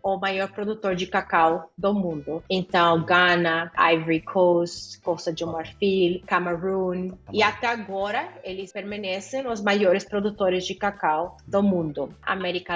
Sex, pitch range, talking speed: female, 180-210 Hz, 130 wpm